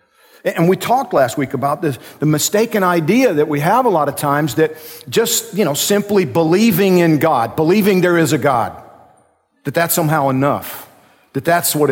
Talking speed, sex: 185 wpm, male